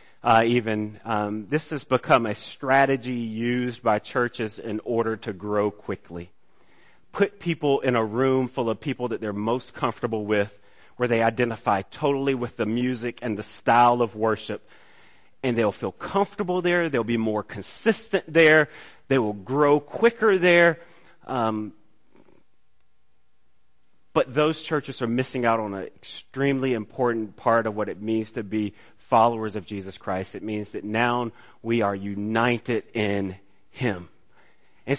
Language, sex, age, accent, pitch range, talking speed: English, male, 30-49, American, 110-155 Hz, 150 wpm